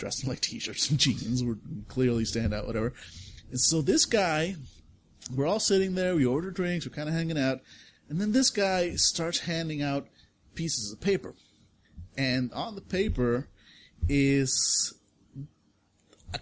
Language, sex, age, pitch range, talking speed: English, male, 30-49, 105-135 Hz, 155 wpm